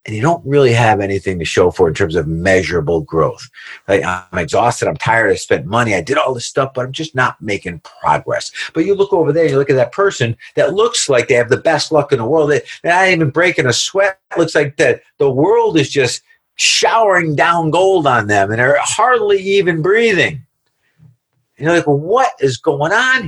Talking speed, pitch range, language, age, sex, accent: 225 wpm, 110-170 Hz, English, 50-69, male, American